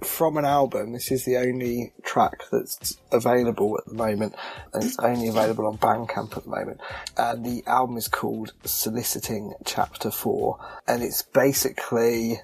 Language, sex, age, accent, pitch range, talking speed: English, male, 20-39, British, 110-125 Hz, 175 wpm